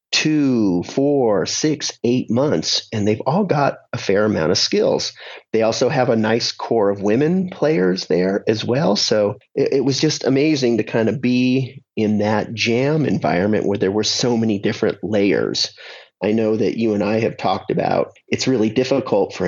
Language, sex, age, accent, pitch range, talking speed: English, male, 30-49, American, 110-140 Hz, 185 wpm